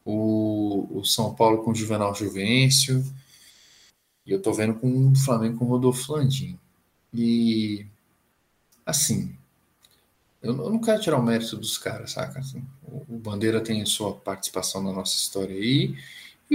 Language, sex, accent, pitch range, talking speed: Portuguese, male, Brazilian, 105-130 Hz, 145 wpm